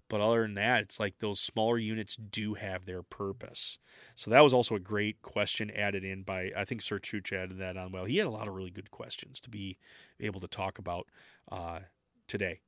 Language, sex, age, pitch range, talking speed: English, male, 30-49, 100-135 Hz, 220 wpm